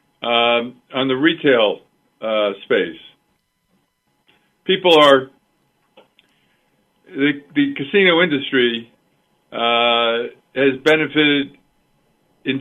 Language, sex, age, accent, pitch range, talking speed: English, male, 50-69, American, 125-150 Hz, 80 wpm